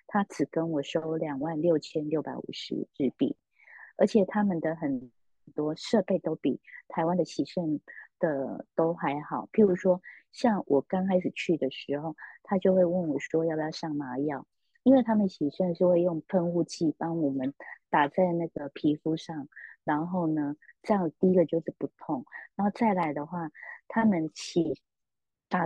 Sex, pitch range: female, 155-190 Hz